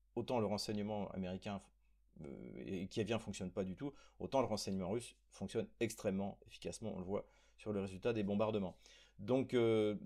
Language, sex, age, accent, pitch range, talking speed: French, male, 30-49, French, 95-120 Hz, 160 wpm